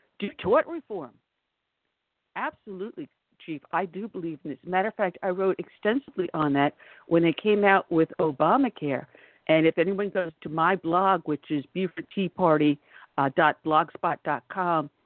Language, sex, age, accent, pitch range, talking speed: English, female, 60-79, American, 155-205 Hz, 145 wpm